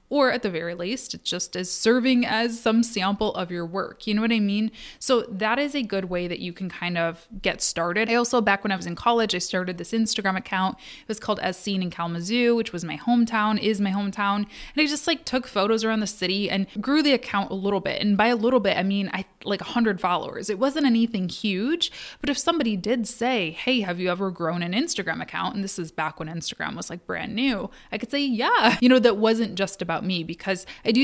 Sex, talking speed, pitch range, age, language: female, 250 wpm, 185-240 Hz, 20-39, English